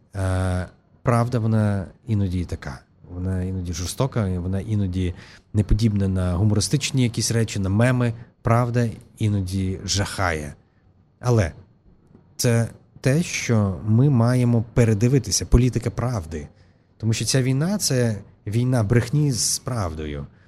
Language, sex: Ukrainian, male